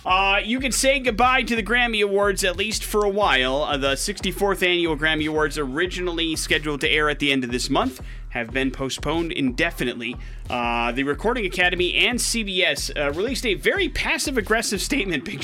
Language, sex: English, male